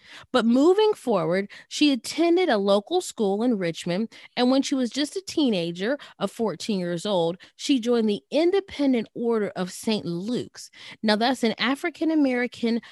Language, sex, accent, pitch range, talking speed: English, female, American, 185-245 Hz, 155 wpm